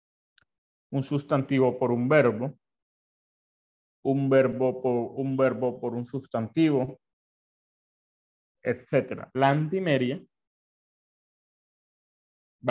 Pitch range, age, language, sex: 115-135 Hz, 30-49, Spanish, male